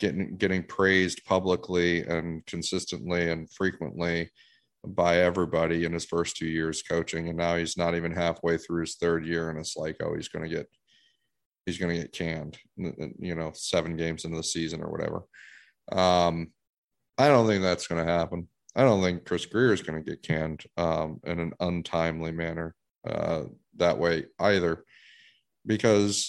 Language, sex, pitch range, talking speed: English, male, 85-95 Hz, 175 wpm